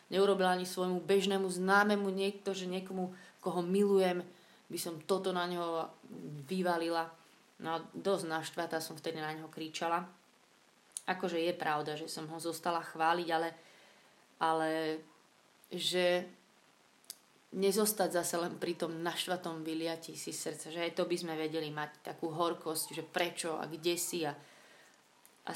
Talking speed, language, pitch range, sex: 145 wpm, Slovak, 165-190 Hz, female